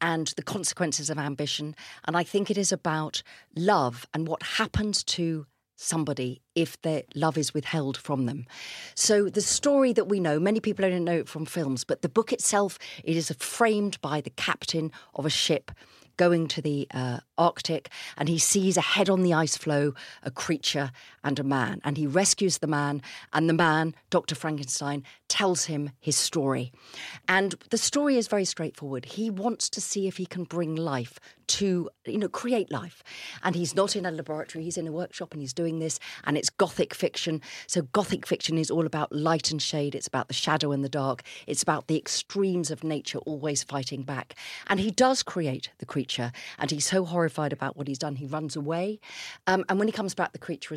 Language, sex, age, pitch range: English, female, 40-59, 145-185 Hz